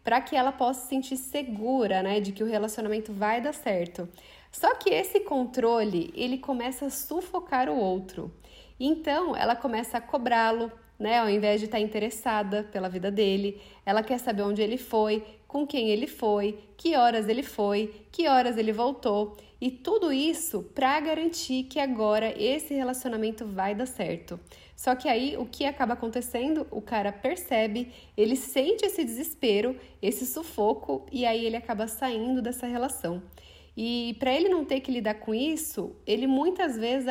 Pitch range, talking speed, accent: 215-265 Hz, 170 wpm, Brazilian